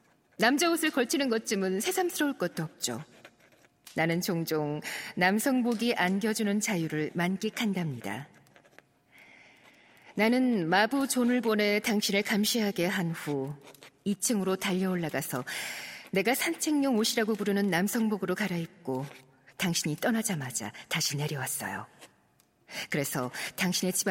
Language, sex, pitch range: Korean, female, 170-245 Hz